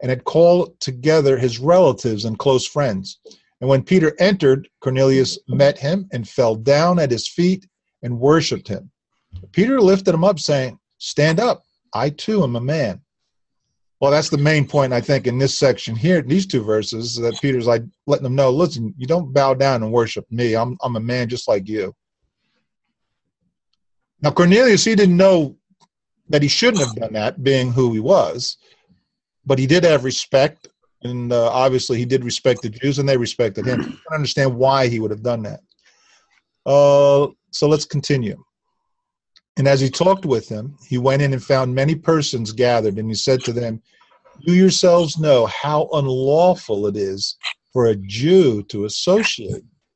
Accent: American